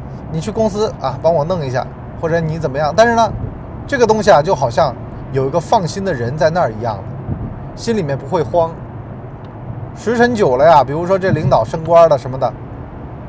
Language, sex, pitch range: Chinese, male, 125-180 Hz